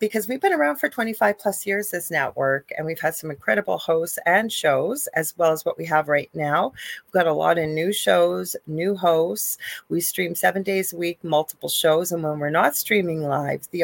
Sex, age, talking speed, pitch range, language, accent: female, 40-59, 215 wpm, 155-195 Hz, English, American